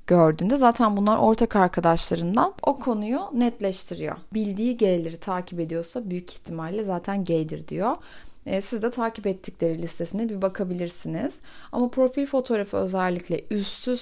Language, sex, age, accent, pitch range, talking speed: Turkish, female, 30-49, native, 185-250 Hz, 125 wpm